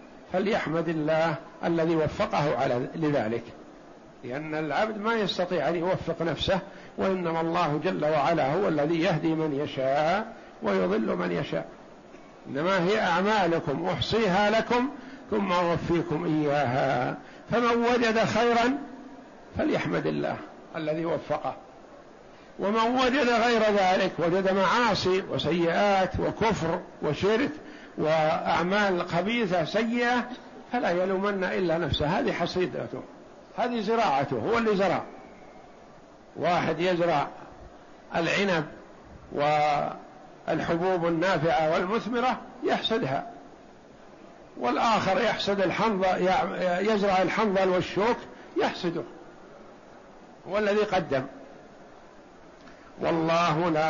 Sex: male